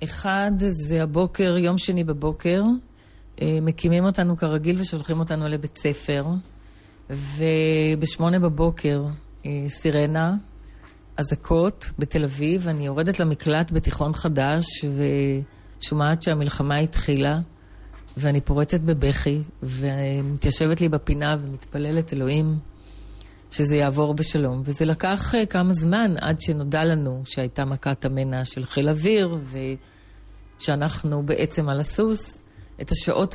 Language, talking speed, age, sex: Hebrew, 105 wpm, 40-59, female